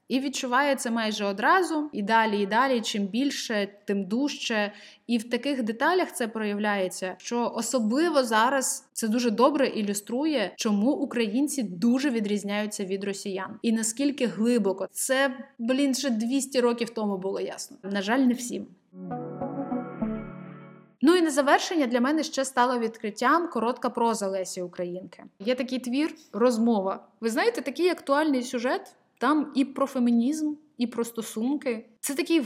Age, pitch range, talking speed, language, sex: 20-39, 200-270 Hz, 145 wpm, Ukrainian, female